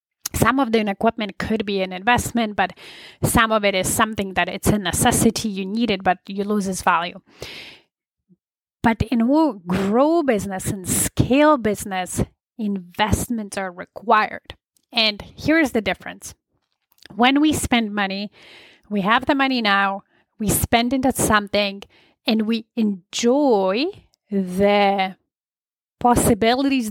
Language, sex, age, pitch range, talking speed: English, female, 30-49, 200-245 Hz, 135 wpm